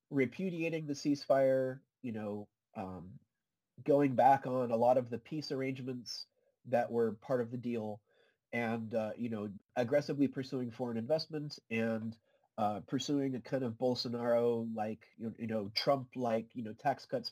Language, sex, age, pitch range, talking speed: English, male, 30-49, 110-130 Hz, 150 wpm